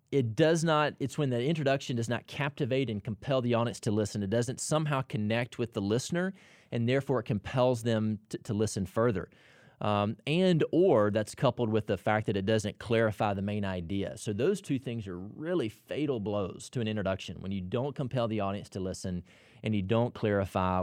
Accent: American